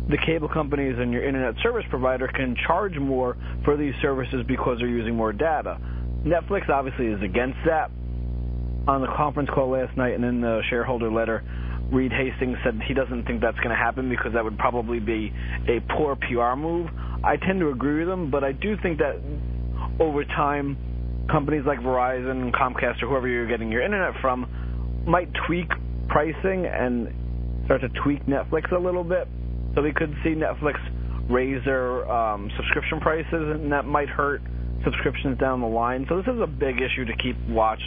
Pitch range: 95-140 Hz